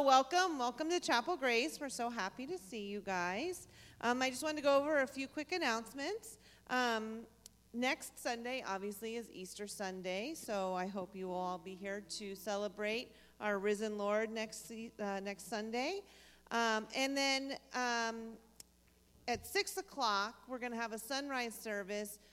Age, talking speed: 40-59, 165 wpm